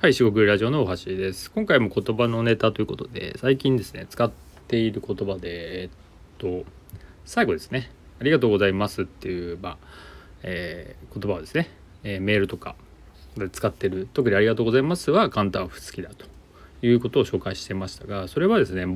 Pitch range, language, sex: 90-120 Hz, Japanese, male